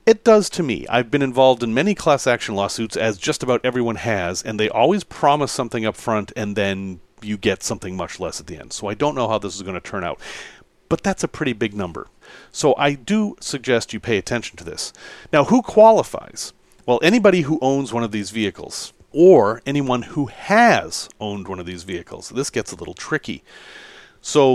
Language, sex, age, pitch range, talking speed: English, male, 40-59, 110-155 Hz, 210 wpm